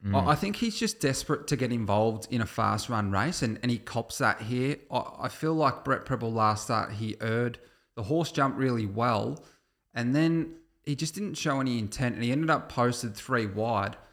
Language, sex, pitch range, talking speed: English, male, 105-125 Hz, 210 wpm